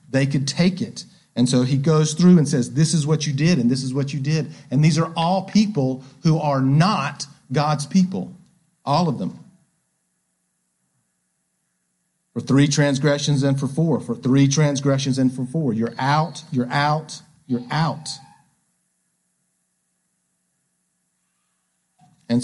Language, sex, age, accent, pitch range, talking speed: English, male, 40-59, American, 130-170 Hz, 145 wpm